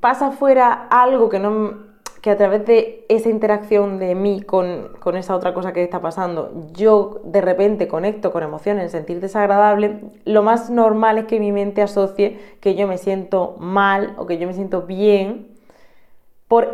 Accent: Spanish